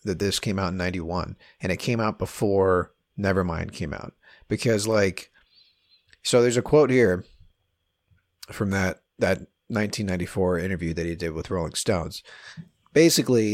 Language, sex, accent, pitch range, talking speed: English, male, American, 90-115 Hz, 145 wpm